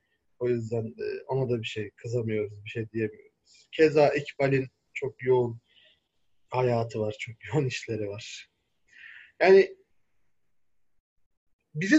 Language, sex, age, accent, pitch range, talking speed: Turkish, male, 30-49, native, 130-185 Hz, 110 wpm